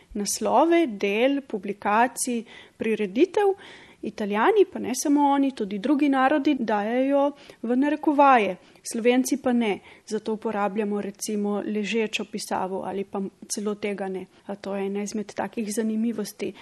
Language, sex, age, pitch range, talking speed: Italian, female, 30-49, 210-285 Hz, 125 wpm